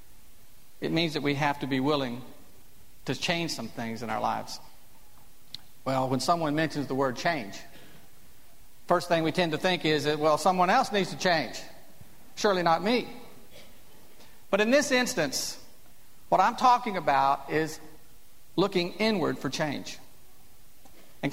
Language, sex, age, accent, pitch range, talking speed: English, male, 50-69, American, 150-200 Hz, 150 wpm